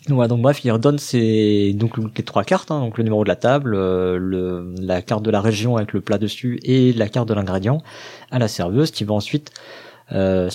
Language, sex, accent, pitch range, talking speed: French, male, French, 100-125 Hz, 215 wpm